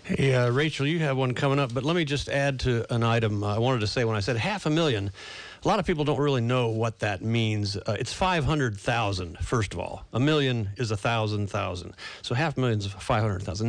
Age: 50-69